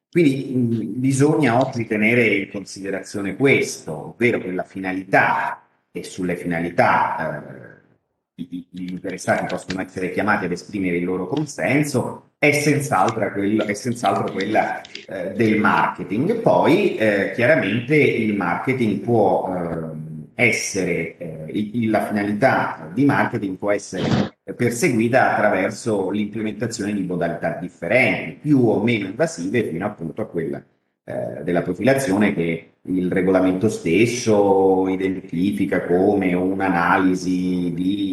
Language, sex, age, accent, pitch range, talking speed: Italian, male, 30-49, native, 90-120 Hz, 110 wpm